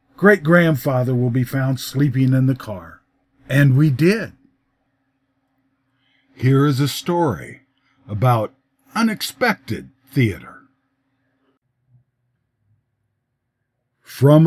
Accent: American